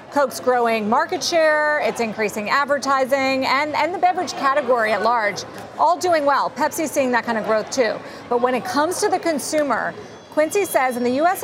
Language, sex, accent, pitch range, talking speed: English, female, American, 230-300 Hz, 190 wpm